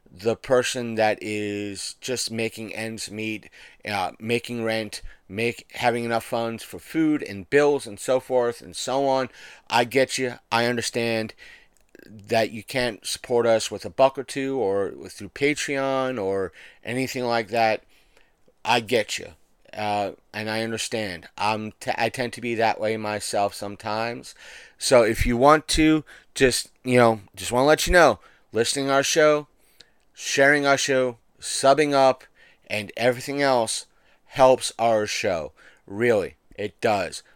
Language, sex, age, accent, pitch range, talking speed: English, male, 30-49, American, 110-135 Hz, 155 wpm